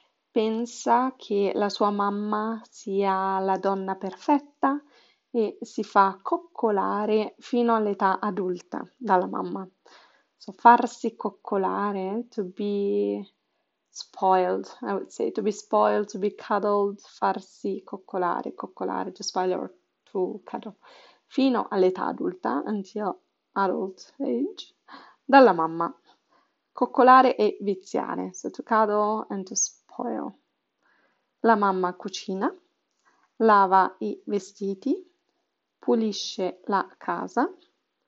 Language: Italian